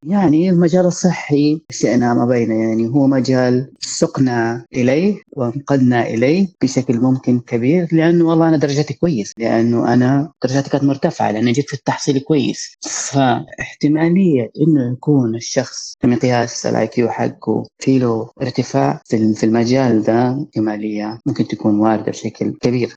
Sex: female